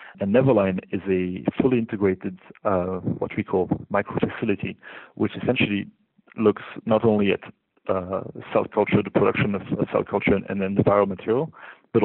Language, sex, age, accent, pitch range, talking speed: English, male, 40-59, French, 95-110 Hz, 165 wpm